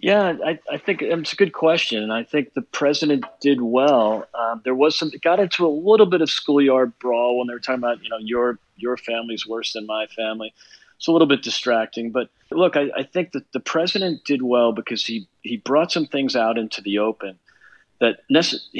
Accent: American